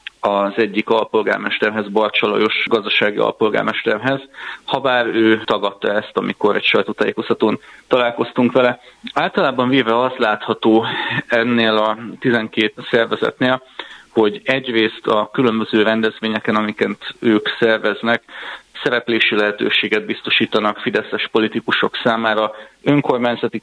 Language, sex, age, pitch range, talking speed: Hungarian, male, 30-49, 105-120 Hz, 100 wpm